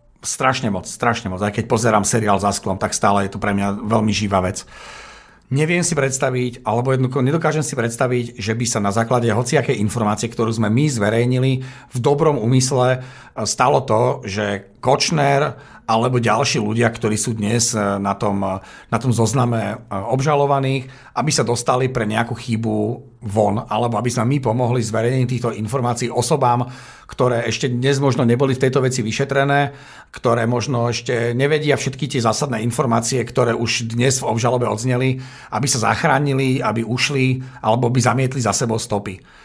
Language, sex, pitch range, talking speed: Slovak, male, 115-135 Hz, 165 wpm